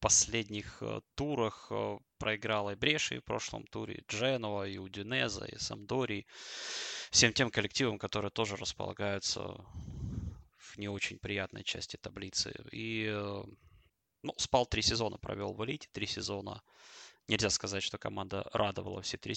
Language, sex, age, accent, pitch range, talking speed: Russian, male, 20-39, native, 100-115 Hz, 135 wpm